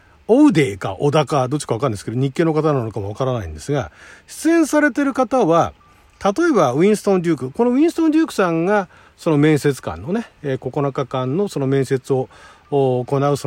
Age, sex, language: 40-59, male, Japanese